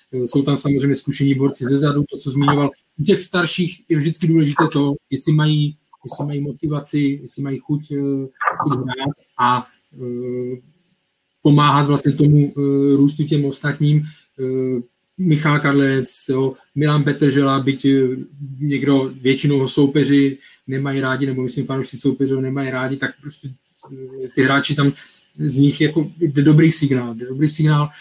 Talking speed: 145 wpm